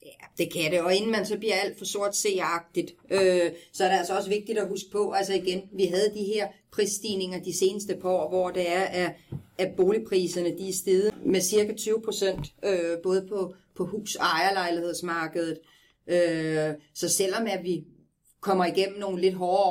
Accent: native